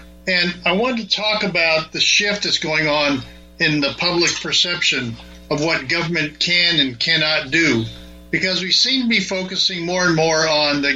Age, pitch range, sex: 50-69, 135-175 Hz, male